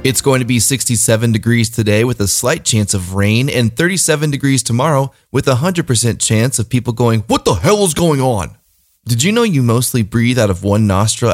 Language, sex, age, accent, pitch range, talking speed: English, male, 20-39, American, 110-145 Hz, 215 wpm